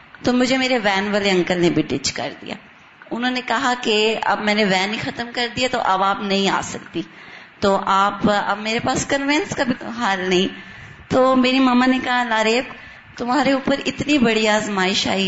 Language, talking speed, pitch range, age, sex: Urdu, 200 wpm, 210-250 Hz, 20-39, female